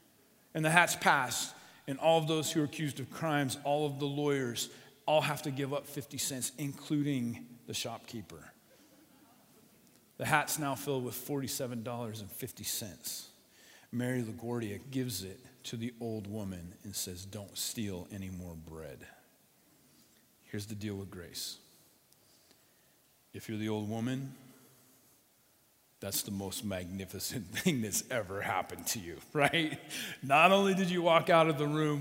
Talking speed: 145 wpm